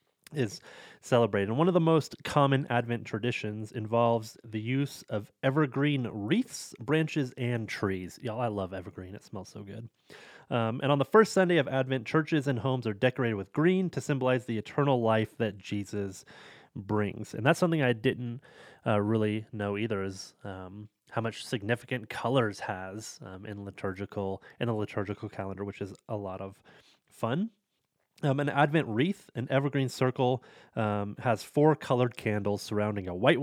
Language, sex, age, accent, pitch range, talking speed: English, male, 30-49, American, 105-135 Hz, 165 wpm